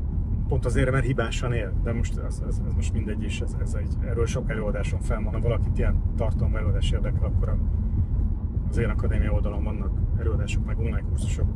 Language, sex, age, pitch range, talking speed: Hungarian, male, 30-49, 90-110 Hz, 175 wpm